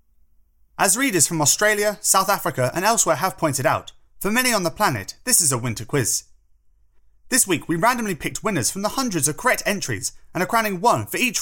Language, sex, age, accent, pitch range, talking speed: English, male, 30-49, British, 120-185 Hz, 205 wpm